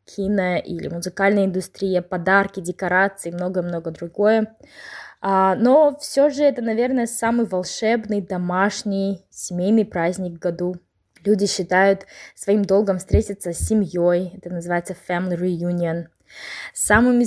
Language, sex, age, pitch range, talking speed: Russian, female, 20-39, 180-225 Hz, 105 wpm